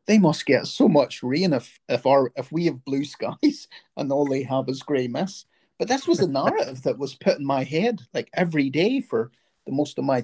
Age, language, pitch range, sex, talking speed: 40-59, English, 115-175 Hz, male, 235 wpm